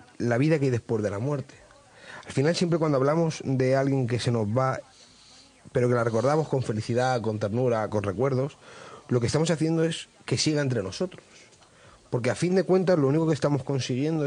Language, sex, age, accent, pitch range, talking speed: Spanish, male, 30-49, Spanish, 120-155 Hz, 200 wpm